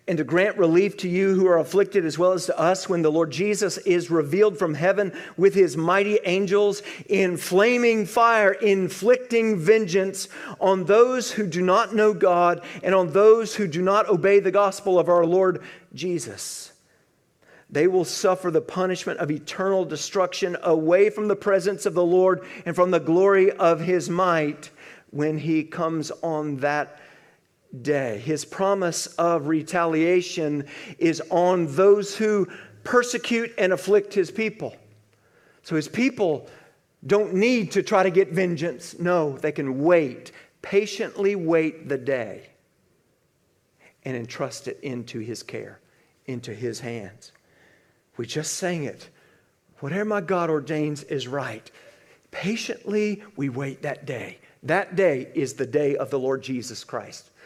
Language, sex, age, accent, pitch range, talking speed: English, male, 50-69, American, 155-200 Hz, 150 wpm